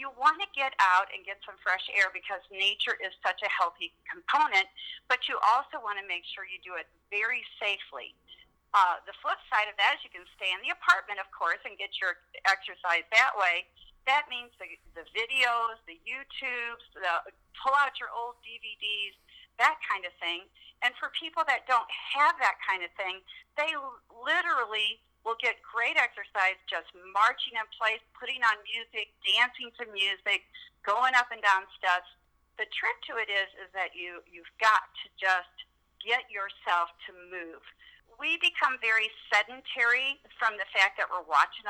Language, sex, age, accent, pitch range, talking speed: English, female, 40-59, American, 190-245 Hz, 175 wpm